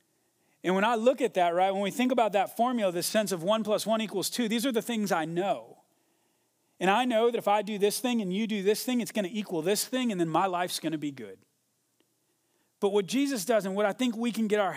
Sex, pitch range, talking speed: male, 185-235 Hz, 270 wpm